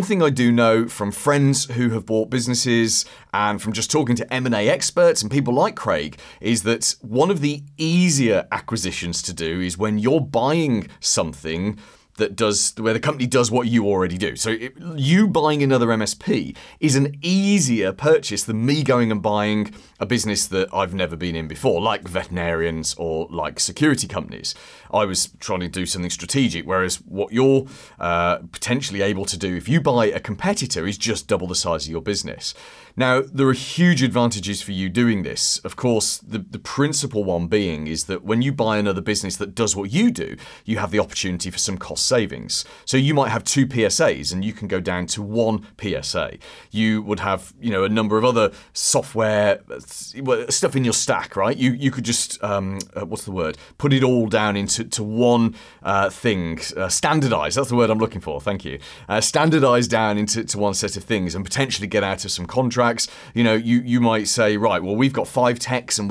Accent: British